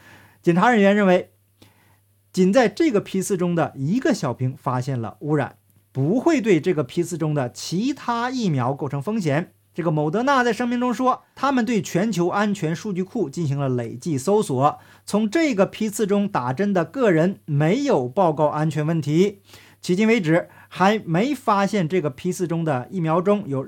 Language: Chinese